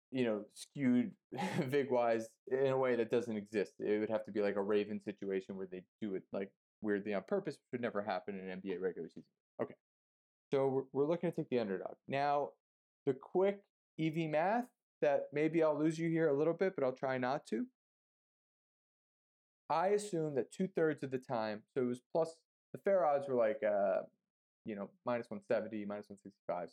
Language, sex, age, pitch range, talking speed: English, male, 30-49, 120-165 Hz, 200 wpm